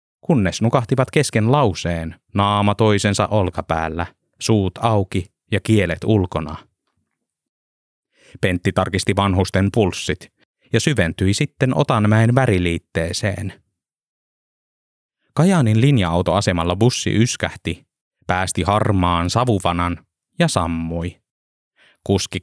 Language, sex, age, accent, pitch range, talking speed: Finnish, male, 20-39, native, 90-115 Hz, 85 wpm